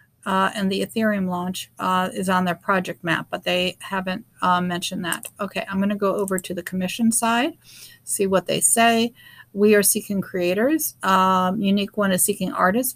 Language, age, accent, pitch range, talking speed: English, 50-69, American, 175-205 Hz, 190 wpm